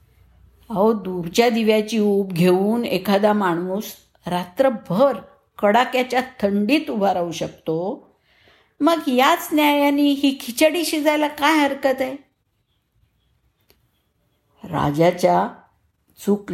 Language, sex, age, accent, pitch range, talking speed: Marathi, female, 60-79, native, 160-225 Hz, 85 wpm